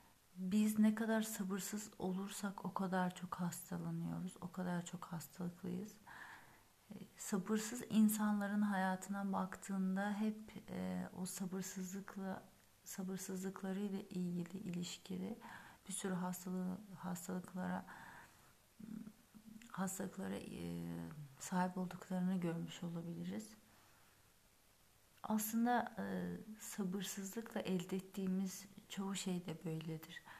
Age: 40-59